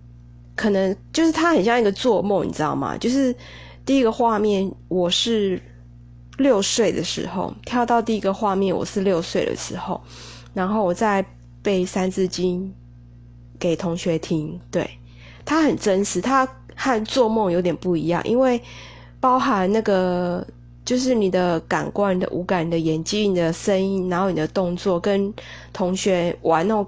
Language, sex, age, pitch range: Chinese, female, 20-39, 160-215 Hz